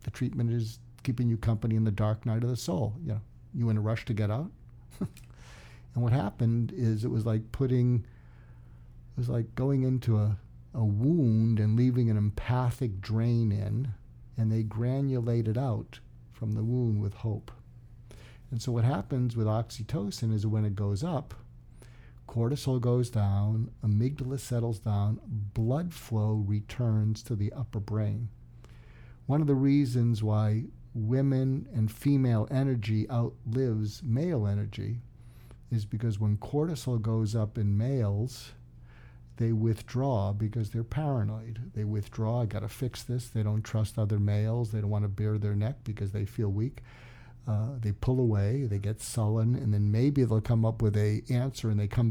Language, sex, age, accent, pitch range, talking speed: English, male, 50-69, American, 110-120 Hz, 165 wpm